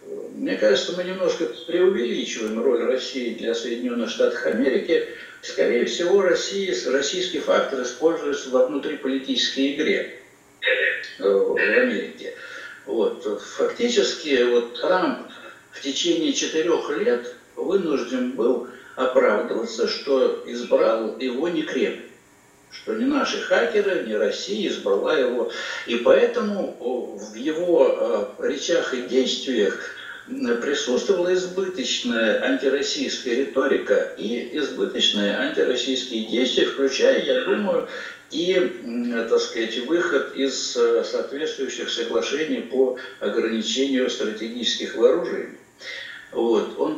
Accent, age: native, 60-79